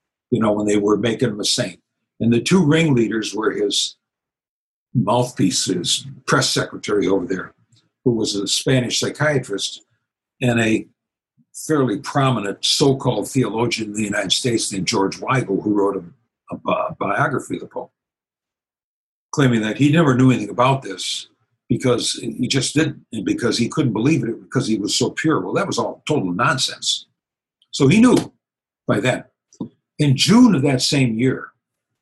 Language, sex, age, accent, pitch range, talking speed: English, male, 60-79, American, 110-135 Hz, 165 wpm